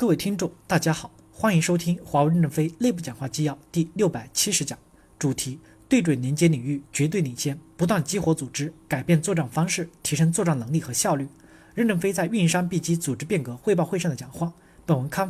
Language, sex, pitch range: Chinese, male, 145-180 Hz